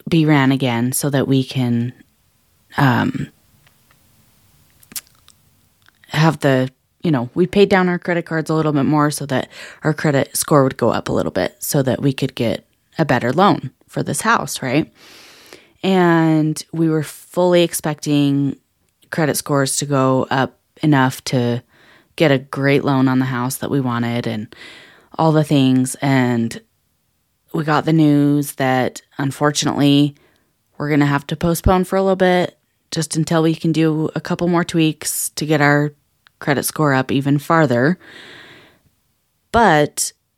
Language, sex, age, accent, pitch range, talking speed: English, female, 20-39, American, 130-160 Hz, 160 wpm